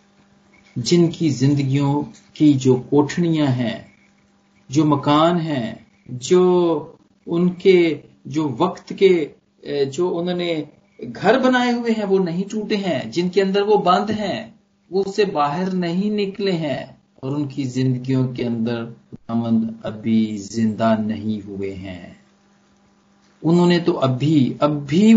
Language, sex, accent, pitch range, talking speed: Hindi, male, native, 125-195 Hz, 120 wpm